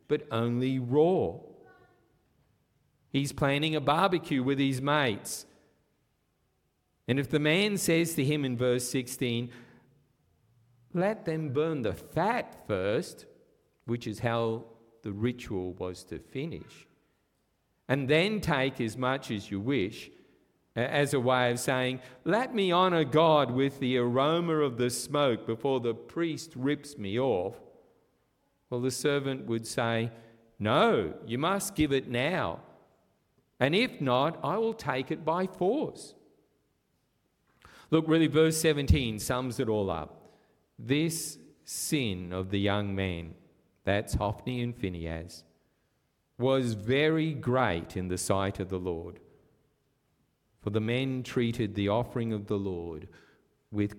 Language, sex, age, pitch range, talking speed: English, male, 50-69, 110-150 Hz, 135 wpm